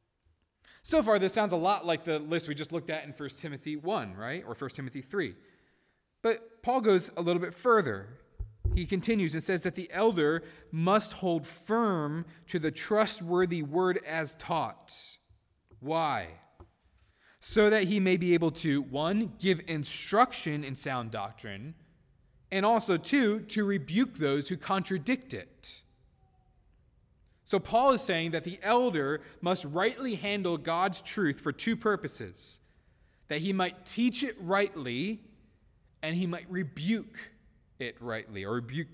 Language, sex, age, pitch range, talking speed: English, male, 20-39, 135-190 Hz, 150 wpm